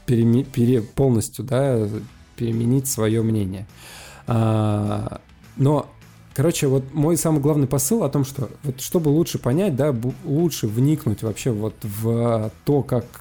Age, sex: 20-39, male